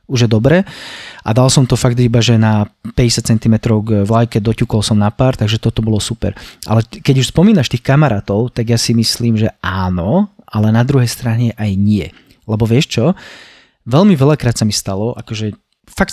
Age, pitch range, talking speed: 20-39, 110-140 Hz, 185 wpm